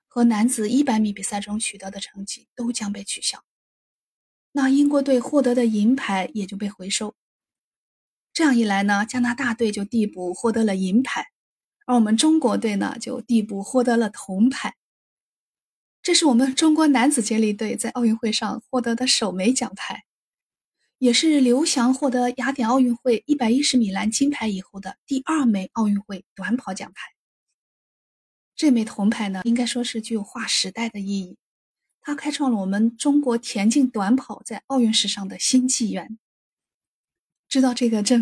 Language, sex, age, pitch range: Chinese, female, 20-39, 210-255 Hz